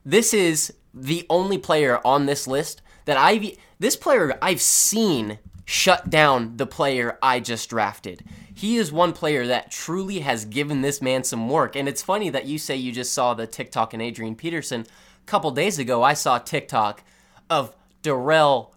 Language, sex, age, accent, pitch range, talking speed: English, male, 20-39, American, 120-165 Hz, 180 wpm